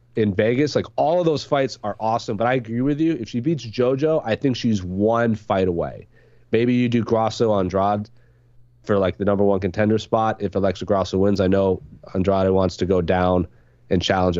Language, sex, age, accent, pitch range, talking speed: English, male, 30-49, American, 100-130 Hz, 205 wpm